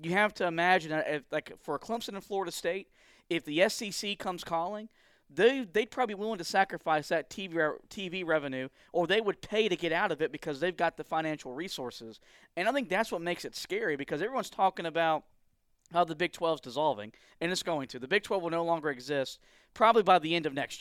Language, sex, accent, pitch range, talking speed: English, male, American, 155-195 Hz, 230 wpm